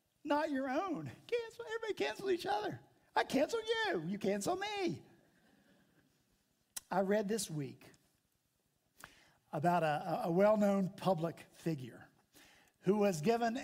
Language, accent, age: English, American, 50-69